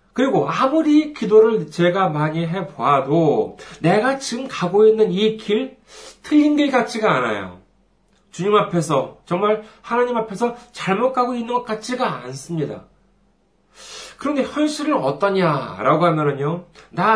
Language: Korean